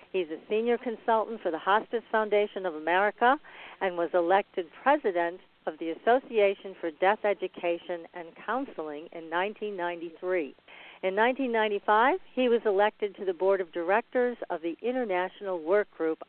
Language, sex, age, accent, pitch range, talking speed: English, female, 50-69, American, 175-215 Hz, 145 wpm